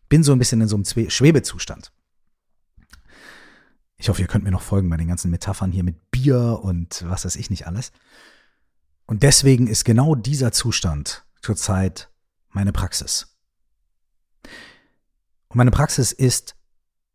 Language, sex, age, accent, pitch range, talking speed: German, male, 40-59, German, 95-130 Hz, 145 wpm